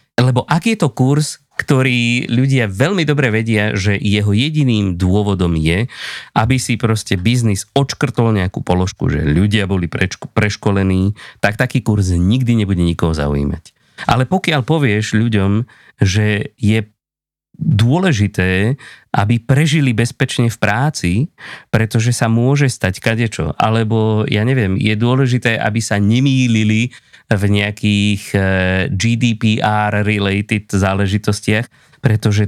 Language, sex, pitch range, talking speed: Slovak, male, 105-130 Hz, 115 wpm